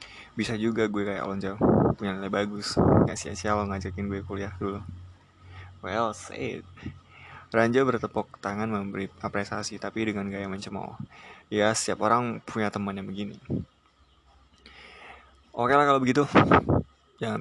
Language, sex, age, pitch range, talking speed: Indonesian, male, 20-39, 100-115 Hz, 140 wpm